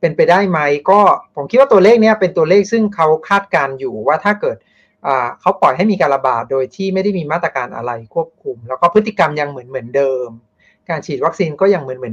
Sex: male